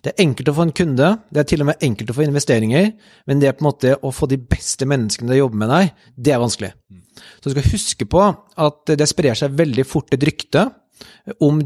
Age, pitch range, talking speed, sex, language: 30-49, 130-155 Hz, 250 wpm, male, English